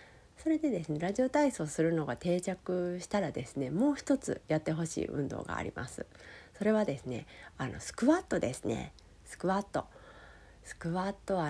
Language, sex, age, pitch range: Japanese, female, 40-59, 150-195 Hz